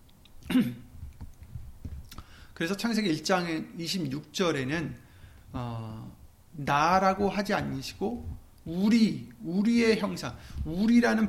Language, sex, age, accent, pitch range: Korean, male, 40-59, native, 130-195 Hz